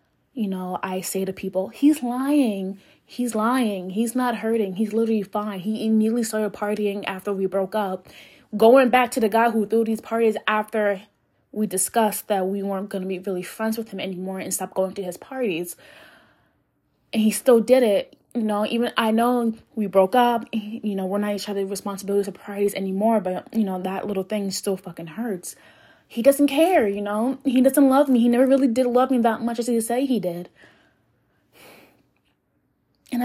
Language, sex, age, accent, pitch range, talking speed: English, female, 20-39, American, 190-235 Hz, 195 wpm